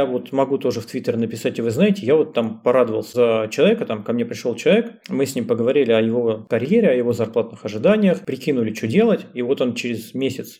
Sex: male